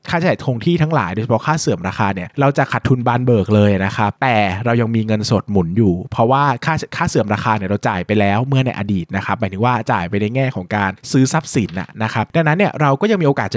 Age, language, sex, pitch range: 20-39, Thai, male, 105-140 Hz